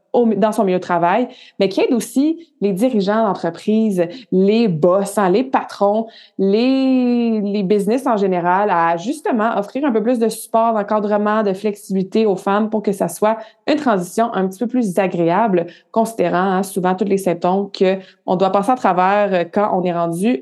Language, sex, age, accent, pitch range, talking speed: French, female, 20-39, Canadian, 190-230 Hz, 180 wpm